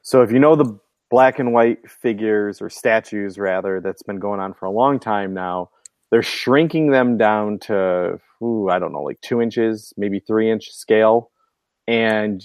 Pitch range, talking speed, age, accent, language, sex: 105-135 Hz, 185 wpm, 30-49, American, English, male